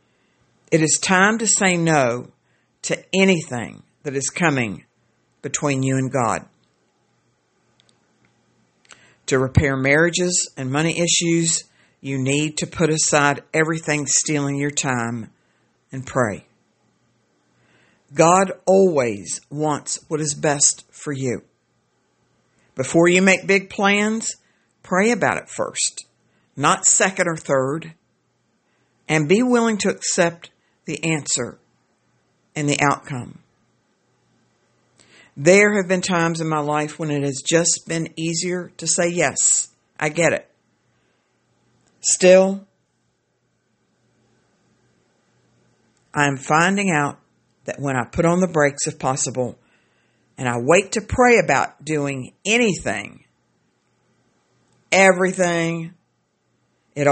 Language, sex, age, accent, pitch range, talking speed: English, female, 60-79, American, 135-180 Hz, 110 wpm